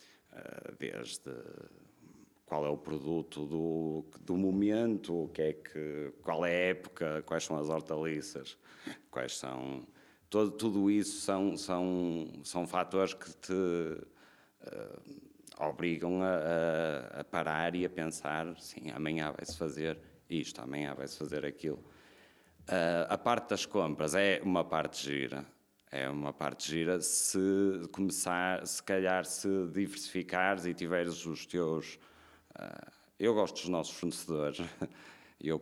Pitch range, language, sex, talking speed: 75-95 Hz, Portuguese, male, 115 wpm